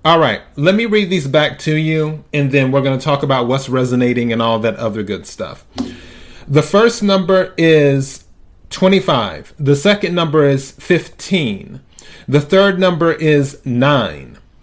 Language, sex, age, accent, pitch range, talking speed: English, male, 30-49, American, 125-160 Hz, 160 wpm